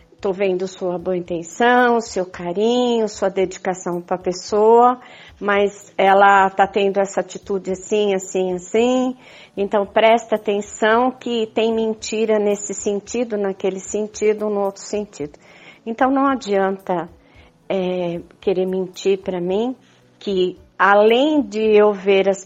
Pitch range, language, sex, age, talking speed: 185-225 Hz, Portuguese, female, 50-69, 130 wpm